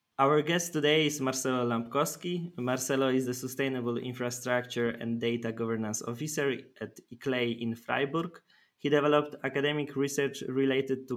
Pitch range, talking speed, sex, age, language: 120-140 Hz, 135 wpm, male, 20-39, English